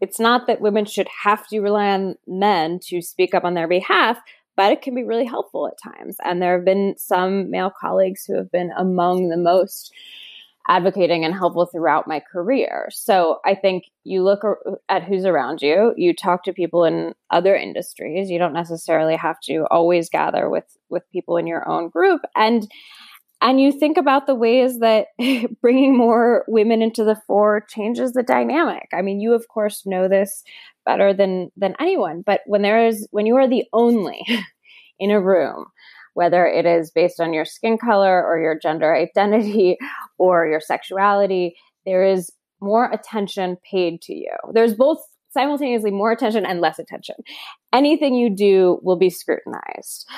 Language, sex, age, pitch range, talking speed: English, female, 20-39, 180-230 Hz, 180 wpm